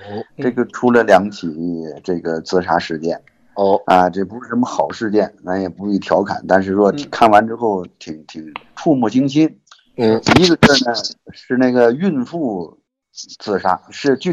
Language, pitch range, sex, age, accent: Chinese, 90-115 Hz, male, 50-69, native